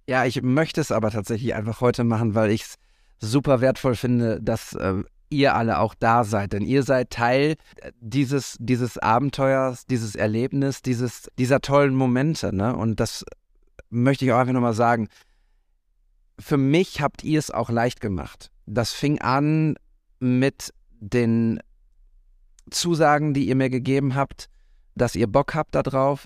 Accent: German